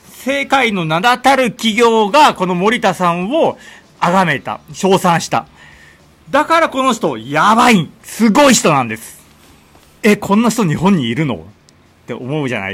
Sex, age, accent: male, 40-59, native